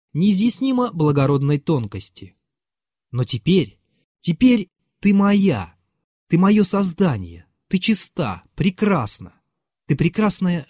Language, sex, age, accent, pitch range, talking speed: Russian, male, 20-39, native, 115-185 Hz, 90 wpm